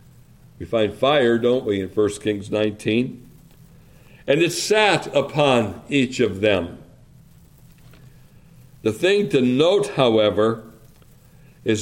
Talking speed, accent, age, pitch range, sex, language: 110 wpm, American, 60-79, 115-140 Hz, male, English